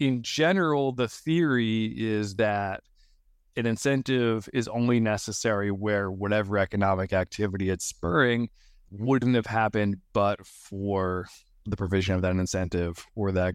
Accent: American